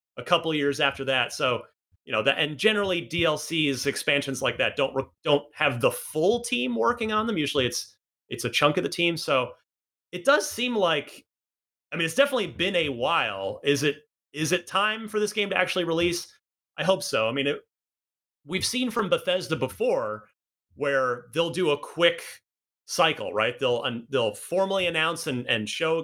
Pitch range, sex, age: 125-185 Hz, male, 30-49